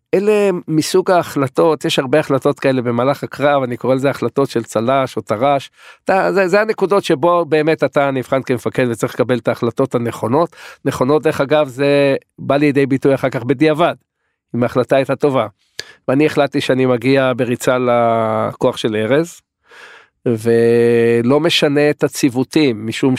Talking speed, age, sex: 150 wpm, 50-69, male